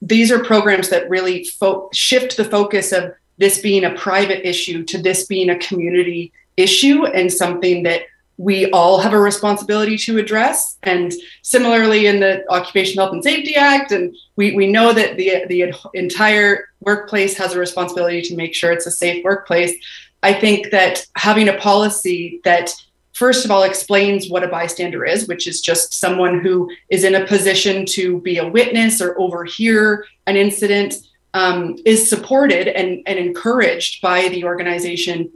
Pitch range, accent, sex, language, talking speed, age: 180-205 Hz, American, female, English, 170 wpm, 30-49